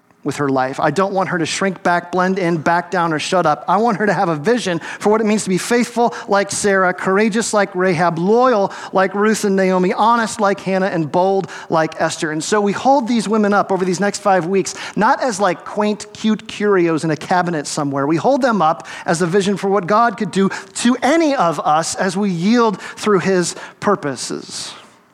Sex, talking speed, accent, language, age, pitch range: male, 220 wpm, American, English, 40-59, 155-200 Hz